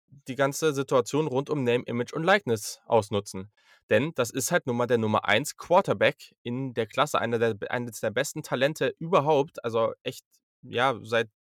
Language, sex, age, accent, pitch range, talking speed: German, male, 20-39, German, 120-155 Hz, 180 wpm